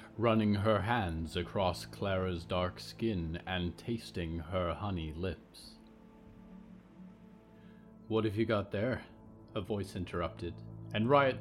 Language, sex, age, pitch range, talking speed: English, male, 30-49, 85-110 Hz, 115 wpm